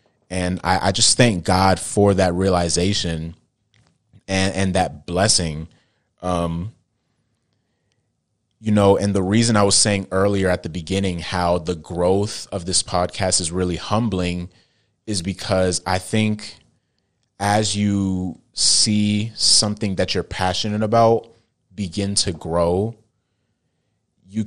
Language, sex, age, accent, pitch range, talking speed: English, male, 30-49, American, 90-105 Hz, 125 wpm